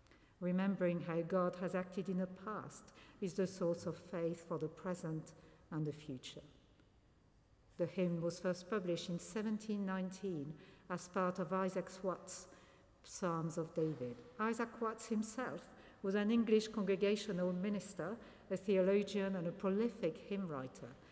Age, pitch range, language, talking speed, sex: 60-79, 170-225 Hz, English, 140 wpm, female